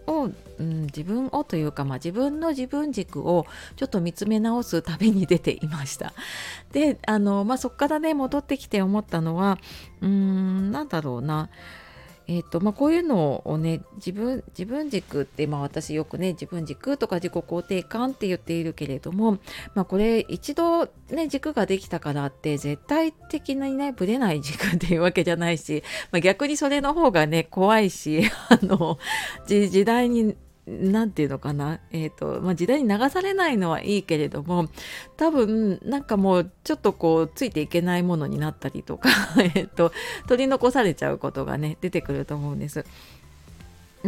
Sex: female